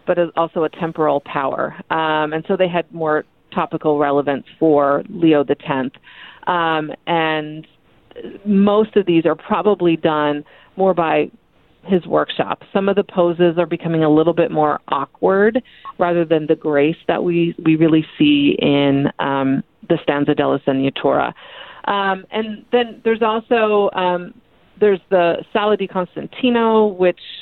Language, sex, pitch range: English, female, 155-195 Hz